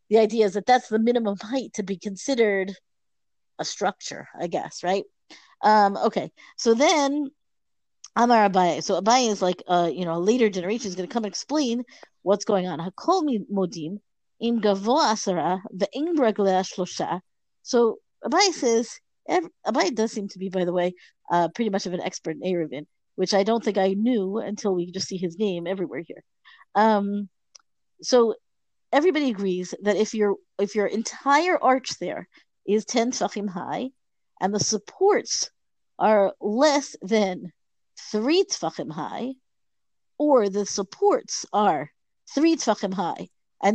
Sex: female